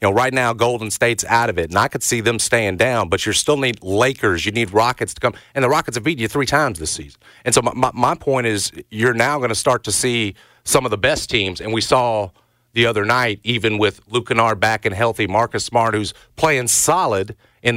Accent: American